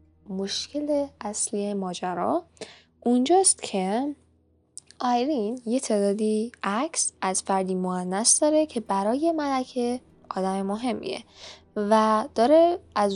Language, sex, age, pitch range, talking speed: Persian, female, 10-29, 195-255 Hz, 95 wpm